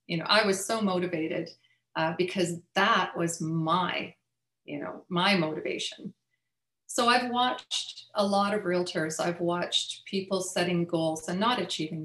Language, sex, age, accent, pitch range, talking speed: English, female, 40-59, American, 165-210 Hz, 150 wpm